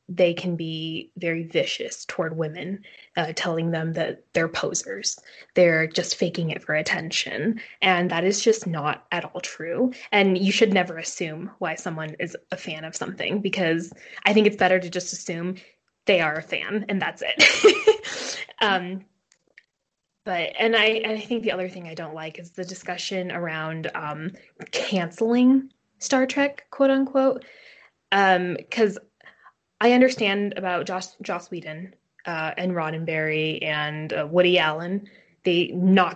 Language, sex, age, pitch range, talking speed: English, female, 20-39, 170-205 Hz, 155 wpm